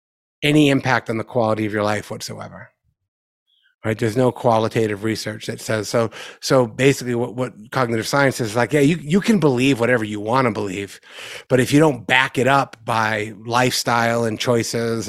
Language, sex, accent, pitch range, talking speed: English, male, American, 110-140 Hz, 185 wpm